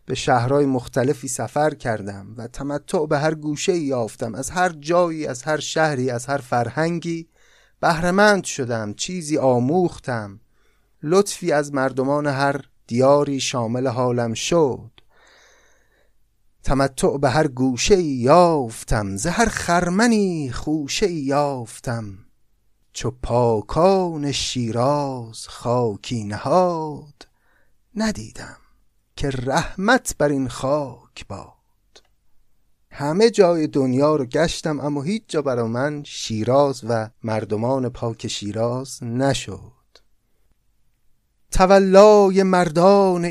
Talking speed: 100 wpm